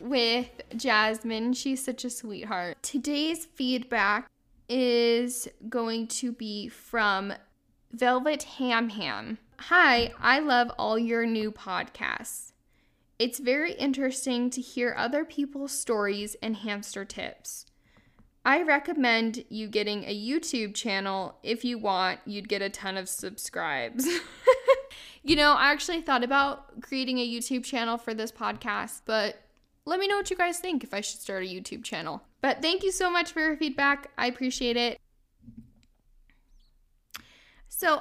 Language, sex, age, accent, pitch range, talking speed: English, female, 10-29, American, 225-275 Hz, 140 wpm